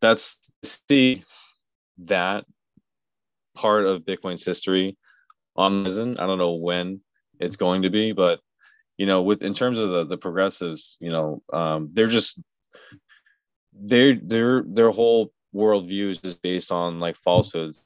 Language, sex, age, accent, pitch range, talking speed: English, male, 20-39, American, 85-100 Hz, 145 wpm